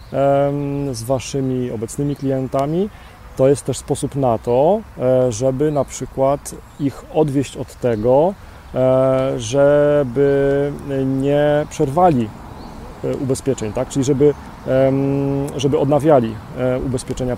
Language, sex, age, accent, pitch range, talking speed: Polish, male, 40-59, native, 125-145 Hz, 95 wpm